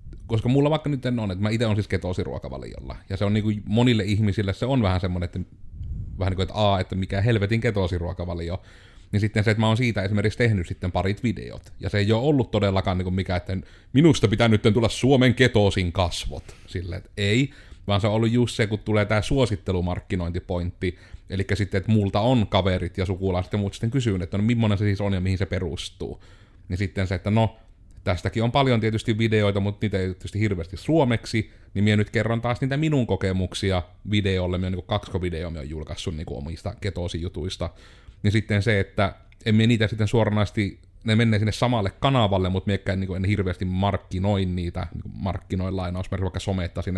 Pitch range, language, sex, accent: 95-110 Hz, Finnish, male, native